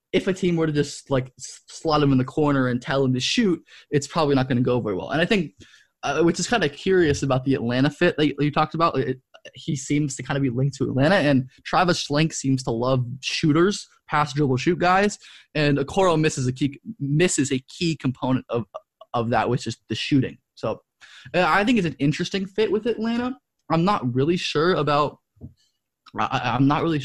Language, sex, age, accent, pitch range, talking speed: English, male, 20-39, American, 130-155 Hz, 220 wpm